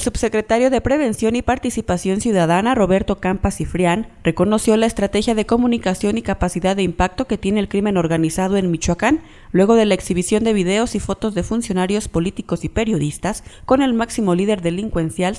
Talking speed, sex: 170 wpm, female